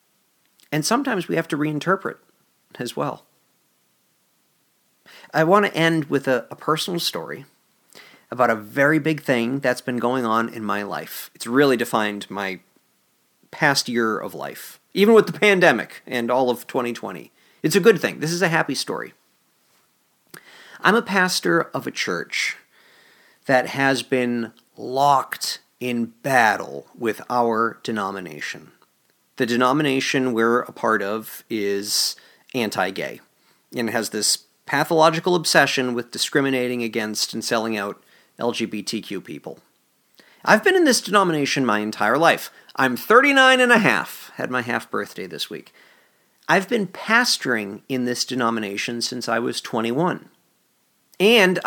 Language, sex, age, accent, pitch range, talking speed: English, male, 40-59, American, 115-165 Hz, 140 wpm